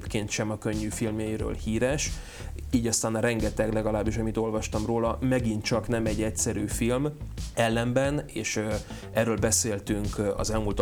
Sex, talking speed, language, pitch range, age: male, 140 wpm, Hungarian, 100-115 Hz, 30-49